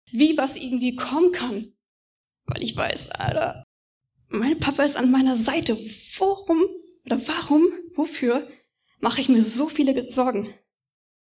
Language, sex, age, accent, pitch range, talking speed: German, female, 20-39, German, 225-295 Hz, 135 wpm